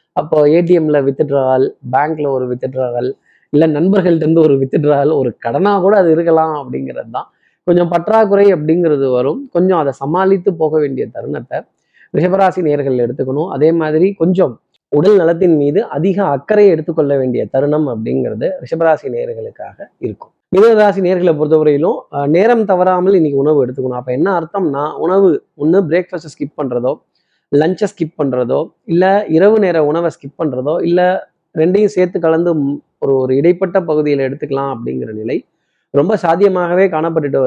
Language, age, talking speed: Tamil, 20-39, 135 wpm